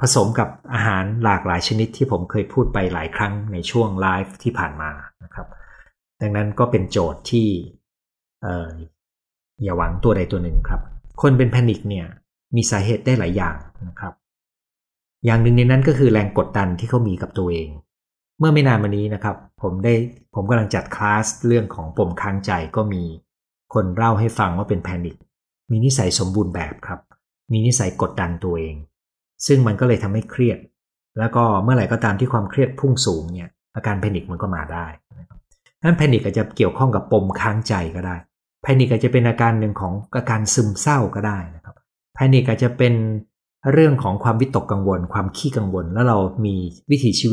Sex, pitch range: male, 90-120 Hz